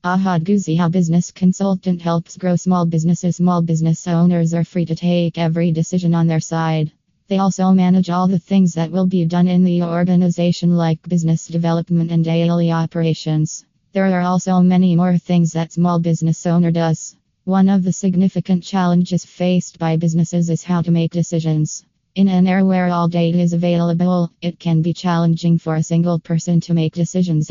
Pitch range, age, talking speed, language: 165-180 Hz, 20-39, 180 wpm, English